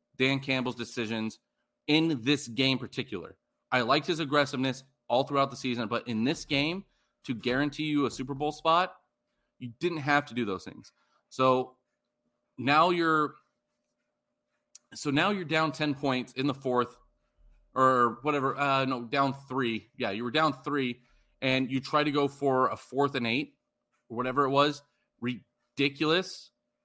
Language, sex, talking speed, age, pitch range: English, male, 160 wpm, 30-49, 125-155 Hz